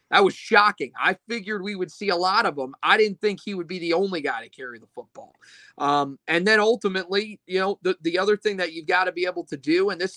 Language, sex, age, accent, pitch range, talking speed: English, male, 30-49, American, 150-190 Hz, 265 wpm